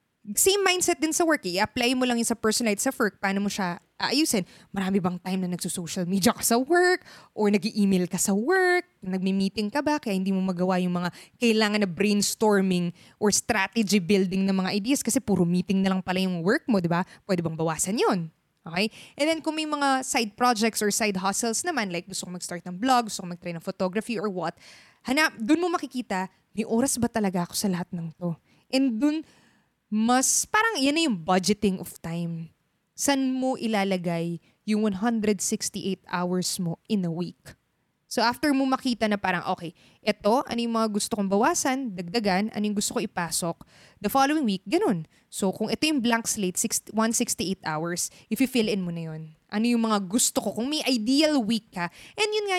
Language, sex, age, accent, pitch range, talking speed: Filipino, female, 20-39, native, 185-250 Hz, 195 wpm